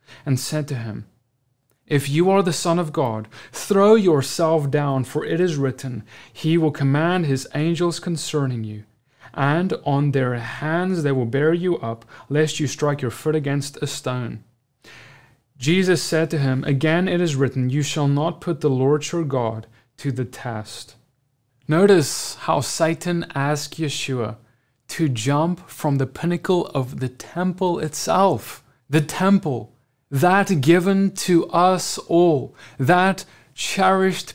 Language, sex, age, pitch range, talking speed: English, male, 30-49, 130-170 Hz, 145 wpm